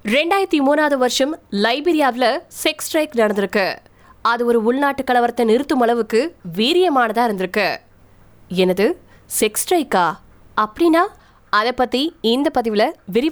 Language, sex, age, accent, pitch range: Tamil, female, 20-39, native, 225-280 Hz